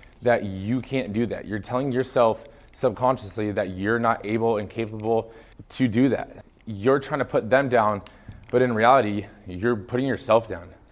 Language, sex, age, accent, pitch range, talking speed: English, male, 20-39, American, 110-130 Hz, 170 wpm